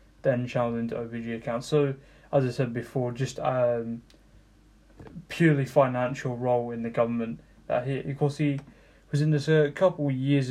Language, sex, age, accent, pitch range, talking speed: English, male, 10-29, British, 120-145 Hz, 170 wpm